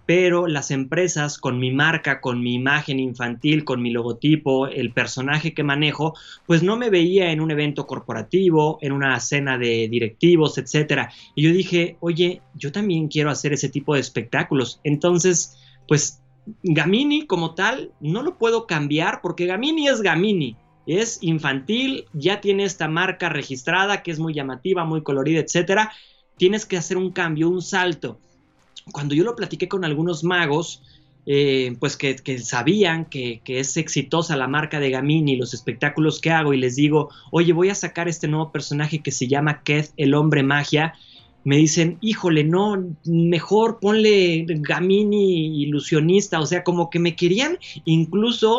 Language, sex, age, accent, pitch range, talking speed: Spanish, male, 30-49, Mexican, 140-175 Hz, 165 wpm